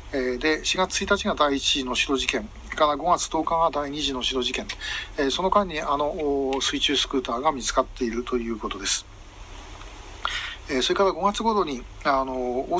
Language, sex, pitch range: Japanese, male, 130-170 Hz